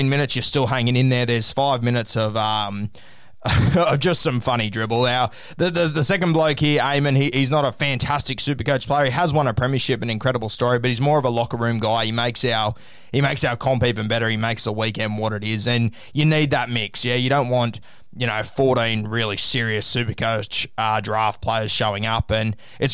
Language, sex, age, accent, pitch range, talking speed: English, male, 20-39, Australian, 110-135 Hz, 220 wpm